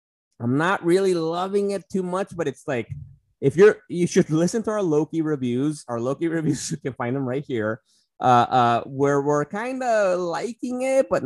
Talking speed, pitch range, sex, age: 195 wpm, 135-190 Hz, male, 20-39